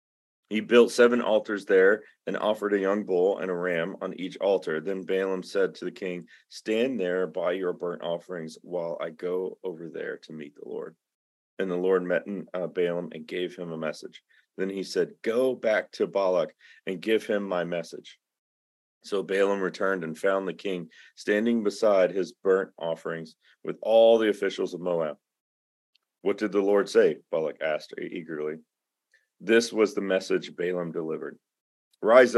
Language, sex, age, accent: English, male, 40-59, American